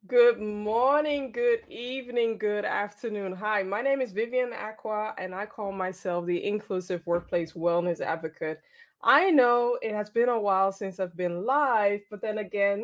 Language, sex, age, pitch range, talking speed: English, female, 20-39, 195-275 Hz, 165 wpm